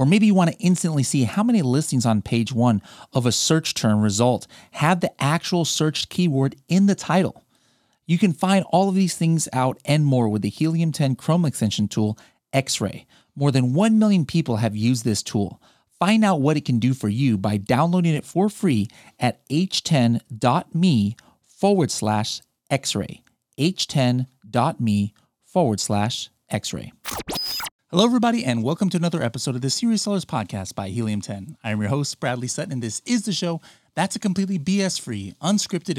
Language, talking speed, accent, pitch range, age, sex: English, 175 wpm, American, 115-165 Hz, 30-49, male